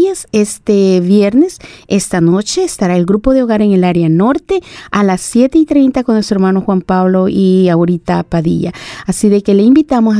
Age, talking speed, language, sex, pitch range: 30-49, 190 wpm, Spanish, female, 185-225 Hz